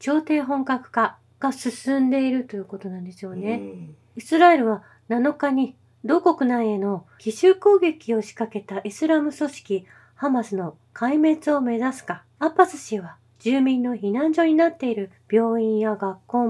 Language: Japanese